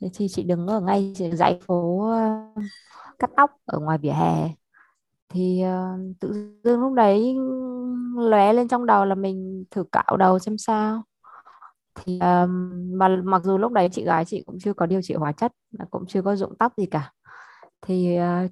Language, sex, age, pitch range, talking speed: Vietnamese, female, 20-39, 180-225 Hz, 190 wpm